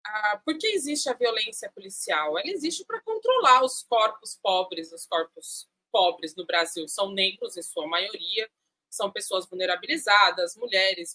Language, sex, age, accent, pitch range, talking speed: Portuguese, female, 20-39, Brazilian, 235-365 Hz, 145 wpm